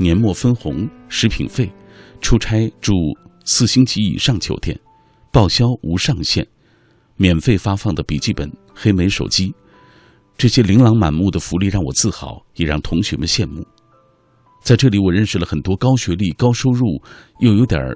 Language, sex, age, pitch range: Chinese, male, 50-69, 85-120 Hz